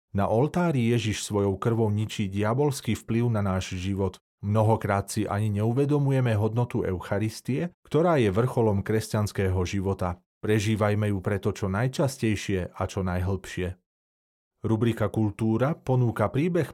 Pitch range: 100-130 Hz